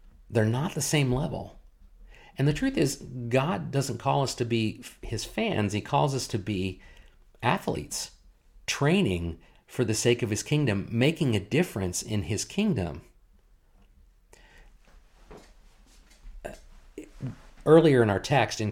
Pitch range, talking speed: 95-125 Hz, 130 wpm